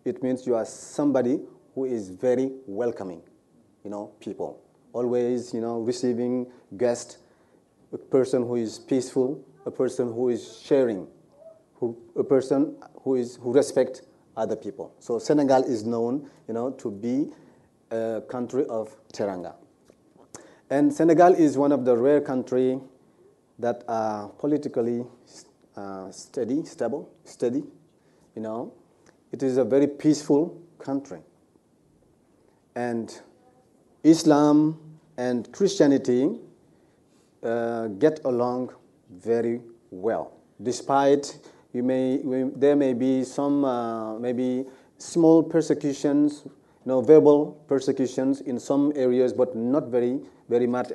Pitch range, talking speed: 120-145 Hz, 120 wpm